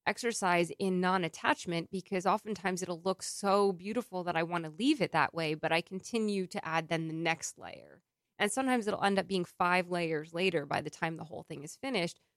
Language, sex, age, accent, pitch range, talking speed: English, female, 20-39, American, 170-205 Hz, 210 wpm